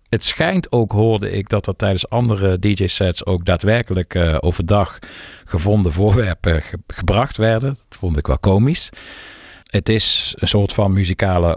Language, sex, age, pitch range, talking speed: Dutch, male, 50-69, 80-105 Hz, 155 wpm